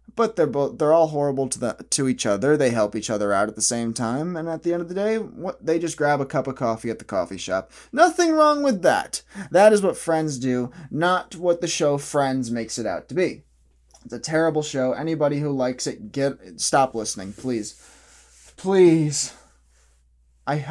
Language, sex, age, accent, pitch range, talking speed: English, male, 20-39, American, 120-165 Hz, 205 wpm